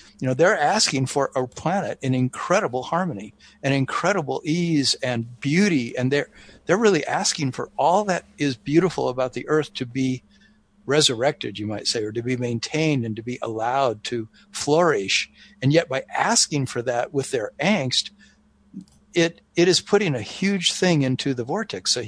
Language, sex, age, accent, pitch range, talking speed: English, male, 50-69, American, 125-155 Hz, 175 wpm